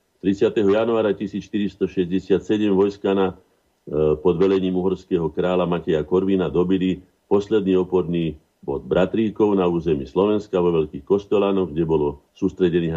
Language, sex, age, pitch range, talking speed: Slovak, male, 50-69, 80-95 Hz, 110 wpm